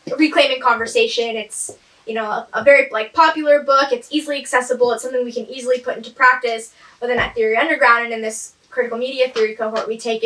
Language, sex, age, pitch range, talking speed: English, female, 10-29, 225-260 Hz, 210 wpm